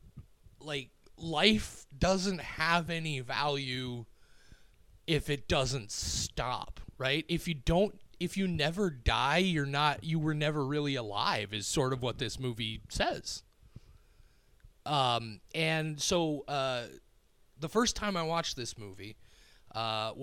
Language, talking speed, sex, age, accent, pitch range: English, 130 wpm, male, 30-49, American, 120-165 Hz